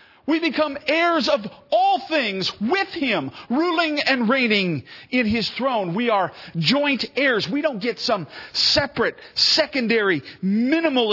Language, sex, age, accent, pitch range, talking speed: English, male, 50-69, American, 145-220 Hz, 135 wpm